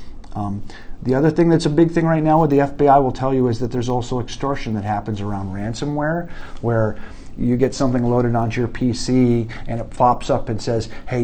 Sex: male